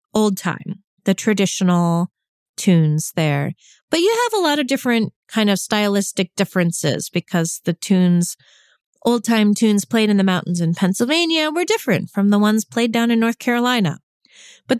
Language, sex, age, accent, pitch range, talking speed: English, female, 30-49, American, 185-245 Hz, 160 wpm